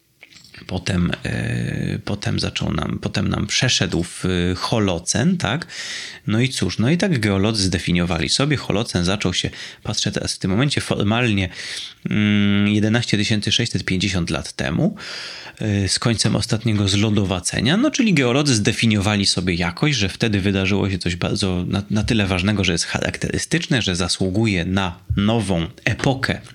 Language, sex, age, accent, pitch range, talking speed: Polish, male, 30-49, native, 95-125 Hz, 140 wpm